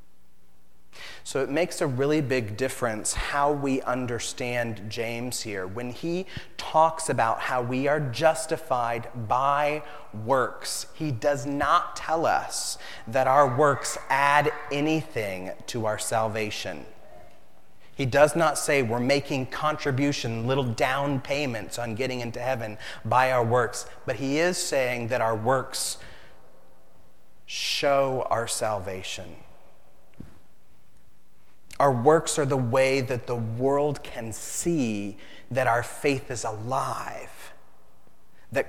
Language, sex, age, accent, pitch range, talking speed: English, male, 30-49, American, 105-140 Hz, 120 wpm